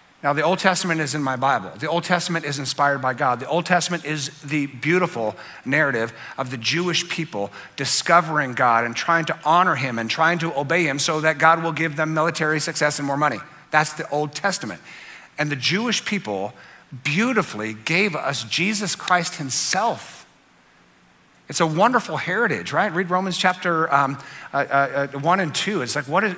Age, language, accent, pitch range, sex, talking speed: 50-69, English, American, 140-175 Hz, male, 180 wpm